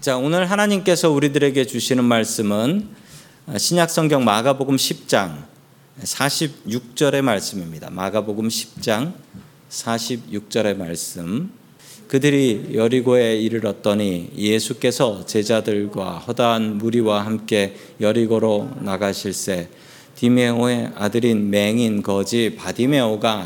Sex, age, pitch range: male, 40-59, 110-155 Hz